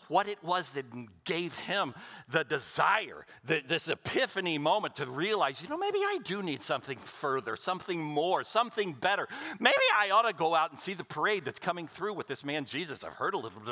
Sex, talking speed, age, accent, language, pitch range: male, 205 wpm, 60-79, American, English, 145-200 Hz